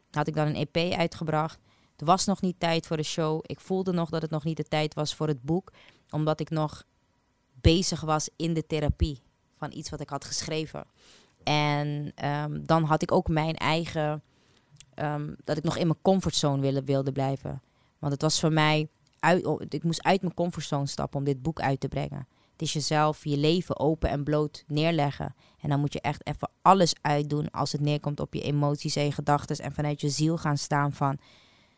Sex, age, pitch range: female, 20-39, 145-160 Hz